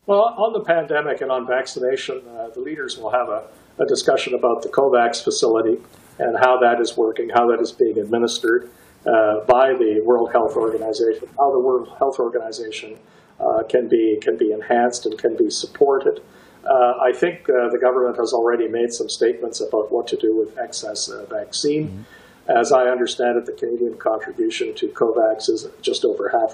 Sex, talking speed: male, 185 wpm